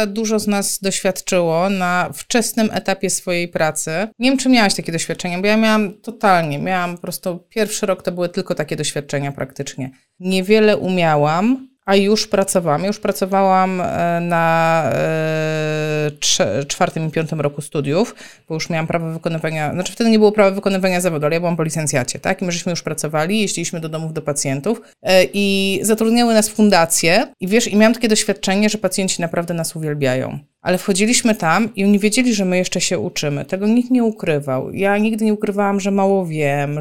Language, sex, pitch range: Polish, female, 170-220 Hz